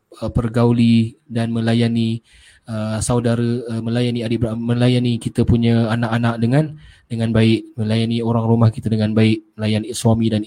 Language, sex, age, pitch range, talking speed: Malay, male, 20-39, 110-130 Hz, 140 wpm